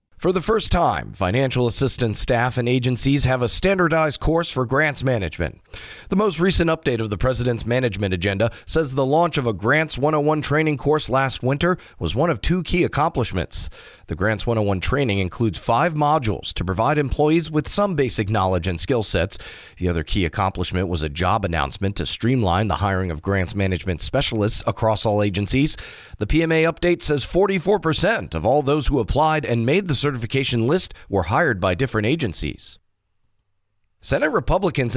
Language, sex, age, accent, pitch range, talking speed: English, male, 30-49, American, 105-150 Hz, 170 wpm